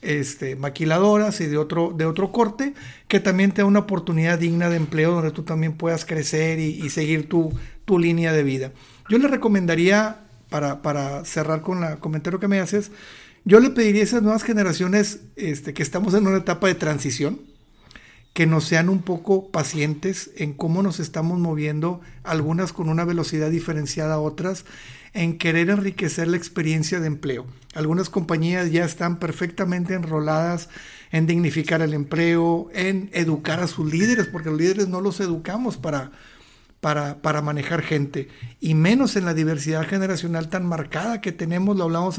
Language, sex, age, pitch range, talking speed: Spanish, male, 50-69, 155-190 Hz, 170 wpm